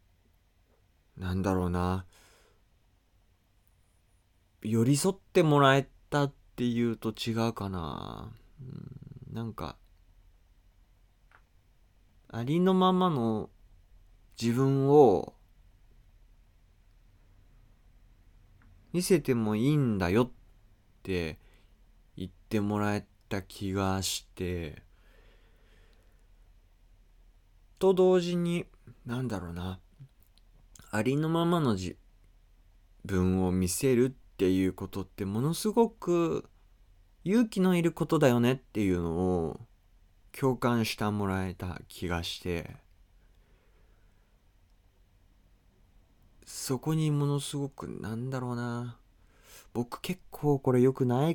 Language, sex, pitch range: Japanese, male, 90-130 Hz